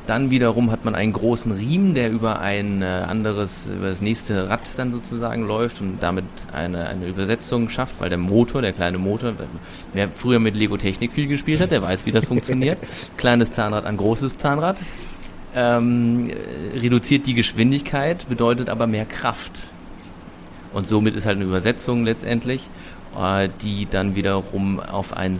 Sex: male